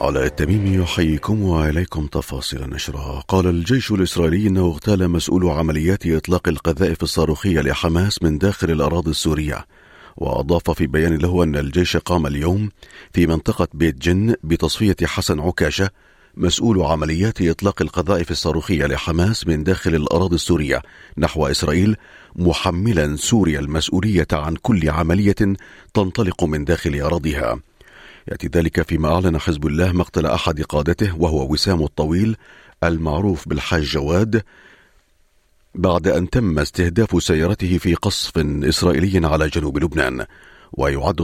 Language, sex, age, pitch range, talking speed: Arabic, male, 40-59, 80-95 Hz, 125 wpm